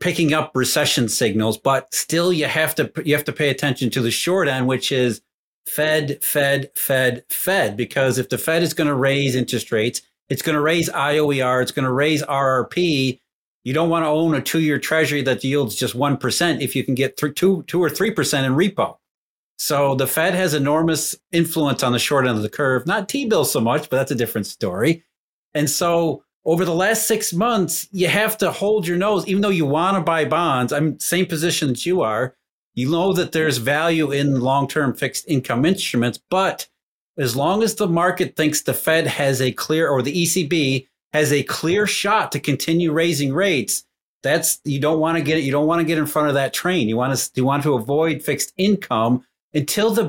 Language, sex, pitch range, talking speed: English, male, 135-170 Hz, 215 wpm